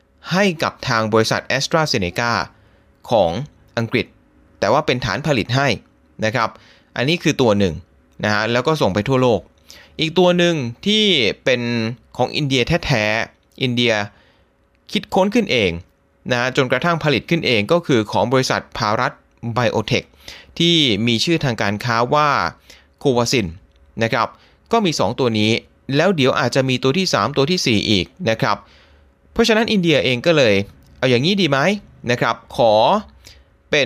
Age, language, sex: 20-39, Thai, male